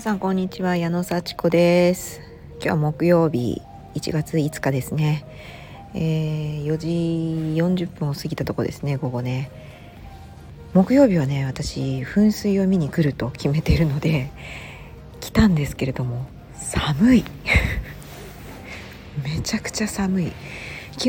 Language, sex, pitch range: Japanese, female, 140-180 Hz